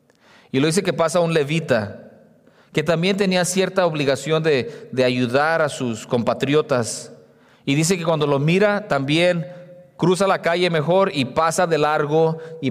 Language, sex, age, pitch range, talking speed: English, male, 40-59, 145-185 Hz, 160 wpm